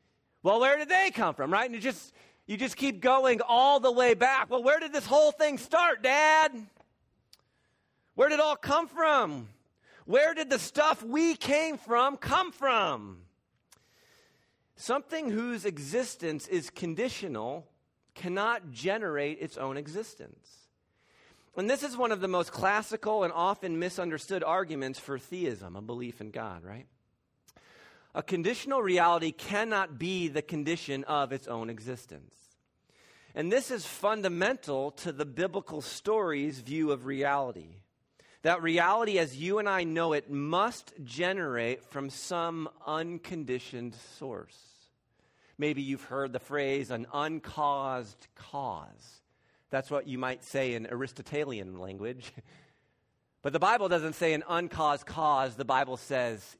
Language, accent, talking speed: English, American, 140 wpm